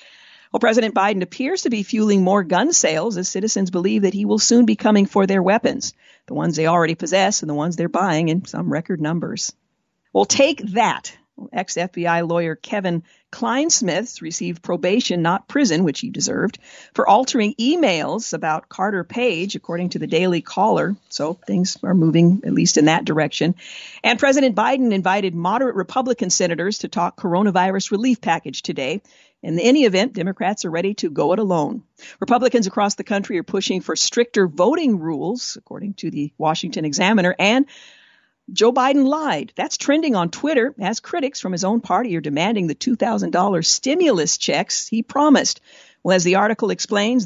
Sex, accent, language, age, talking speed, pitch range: female, American, English, 50-69, 170 wpm, 175-230 Hz